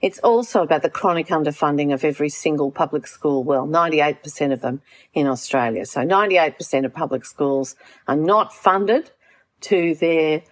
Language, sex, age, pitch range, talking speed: English, female, 50-69, 150-195 Hz, 155 wpm